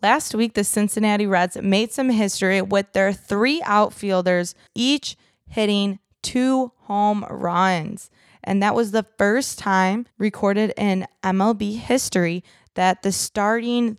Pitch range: 180-210 Hz